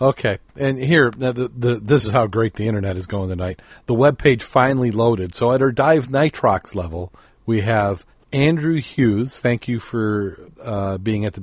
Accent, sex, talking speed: American, male, 185 wpm